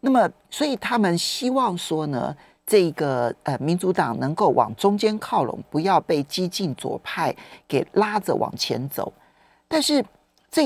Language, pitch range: Chinese, 160-235 Hz